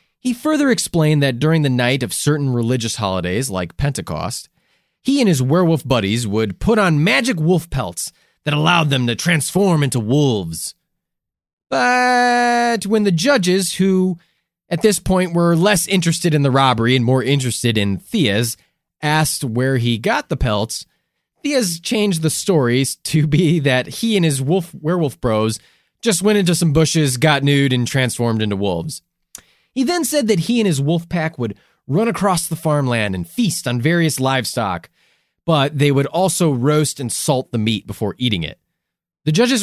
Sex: male